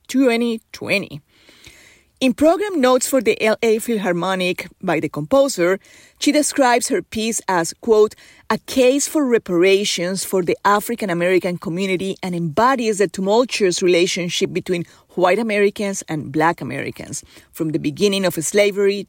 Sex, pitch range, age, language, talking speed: female, 170-210 Hz, 30-49, English, 130 wpm